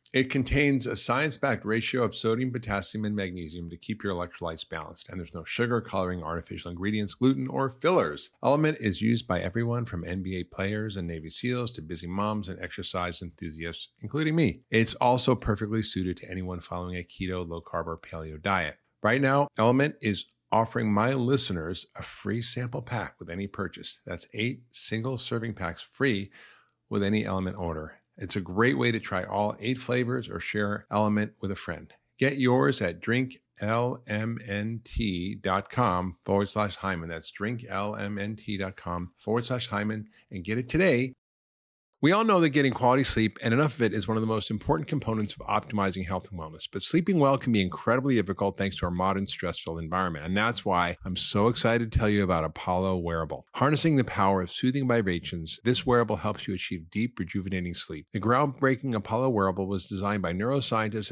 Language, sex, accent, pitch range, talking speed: English, male, American, 90-120 Hz, 175 wpm